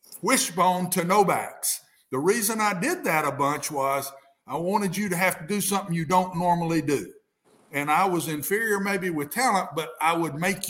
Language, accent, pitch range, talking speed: English, American, 160-220 Hz, 190 wpm